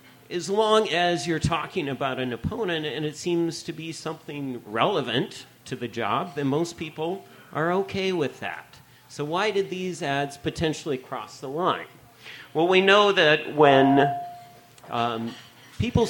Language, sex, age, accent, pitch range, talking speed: English, male, 40-59, American, 120-155 Hz, 155 wpm